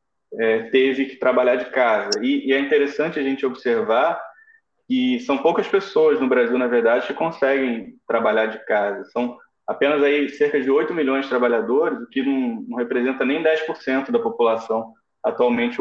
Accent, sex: Brazilian, male